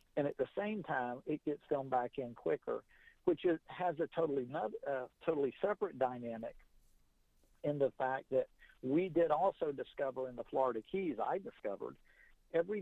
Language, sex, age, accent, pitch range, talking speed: English, male, 50-69, American, 125-160 Hz, 160 wpm